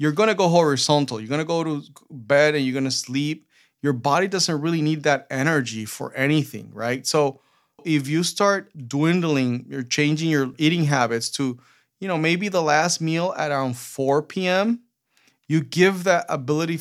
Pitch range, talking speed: 135-160 Hz, 180 wpm